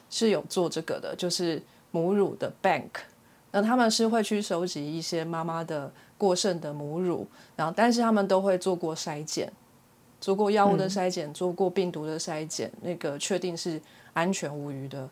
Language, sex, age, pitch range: Chinese, female, 30-49, 165-205 Hz